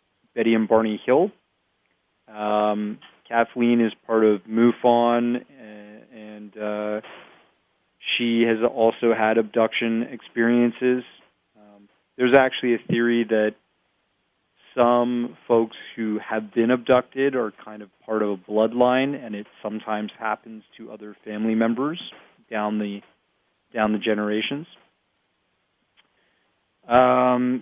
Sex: male